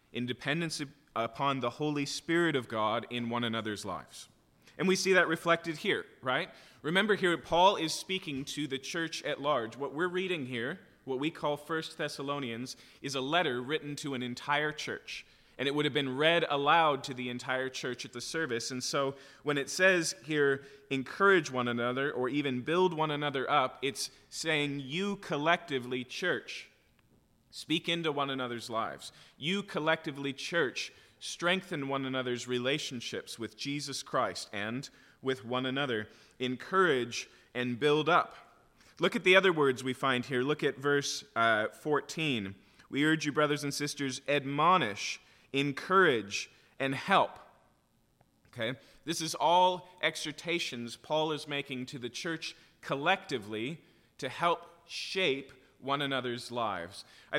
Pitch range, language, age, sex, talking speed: 130-160 Hz, English, 30-49, male, 150 wpm